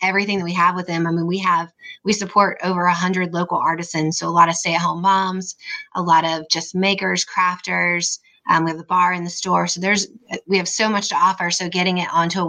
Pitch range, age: 165-185 Hz, 20-39